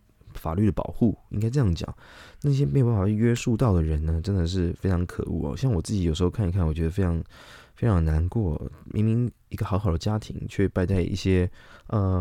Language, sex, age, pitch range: Chinese, male, 20-39, 85-110 Hz